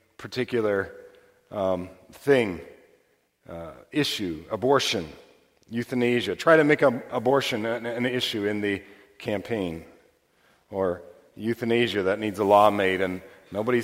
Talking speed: 115 wpm